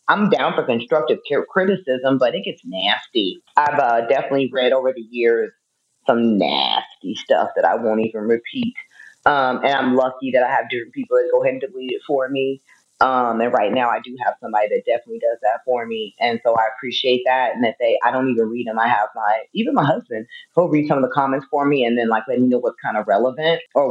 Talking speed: 235 wpm